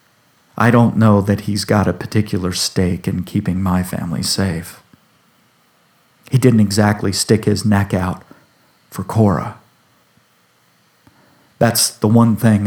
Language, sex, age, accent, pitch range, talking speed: English, male, 50-69, American, 100-120 Hz, 130 wpm